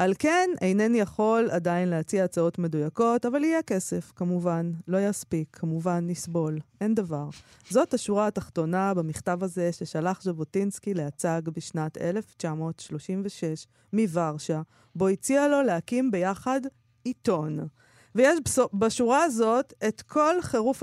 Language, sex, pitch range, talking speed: Hebrew, female, 170-230 Hz, 120 wpm